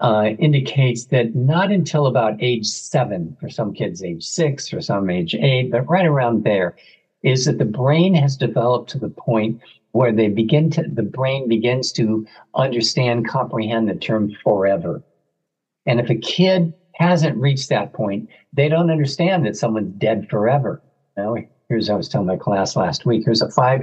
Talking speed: 175 wpm